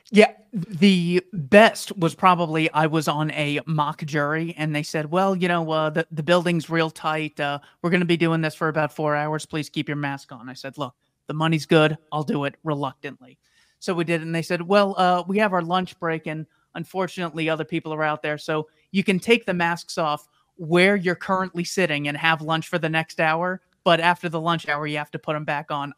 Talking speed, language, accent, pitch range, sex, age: 230 wpm, English, American, 155-190 Hz, male, 30-49